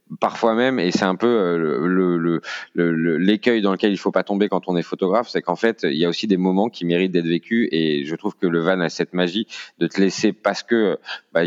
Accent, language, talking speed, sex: French, French, 260 wpm, male